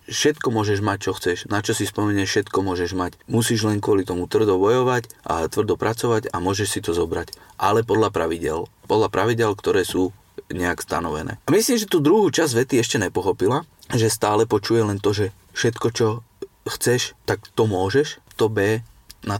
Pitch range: 95-115 Hz